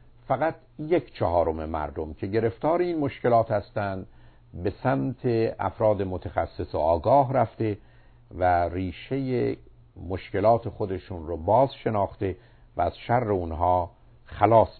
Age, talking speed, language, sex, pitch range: 50-69, 115 wpm, Persian, male, 100-130 Hz